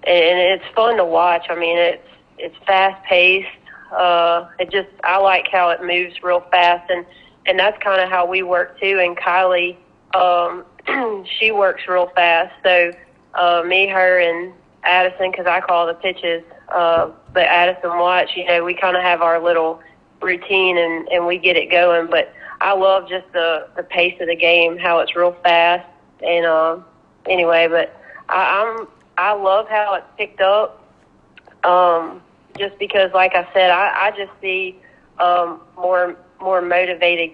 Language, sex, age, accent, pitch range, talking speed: English, female, 30-49, American, 170-185 Hz, 175 wpm